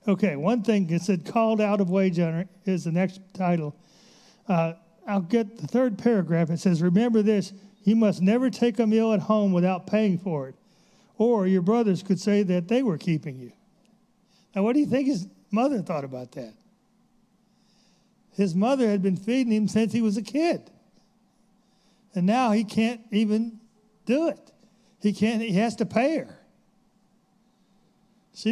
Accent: American